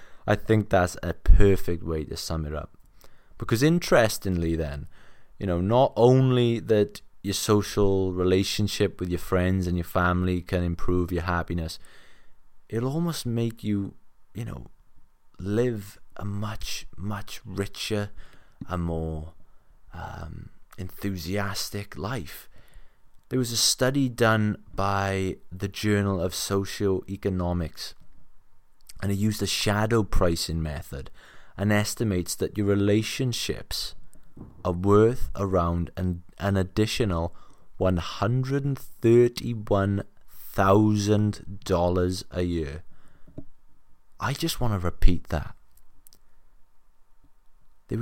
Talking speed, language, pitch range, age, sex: 105 wpm, English, 90-110 Hz, 20-39, male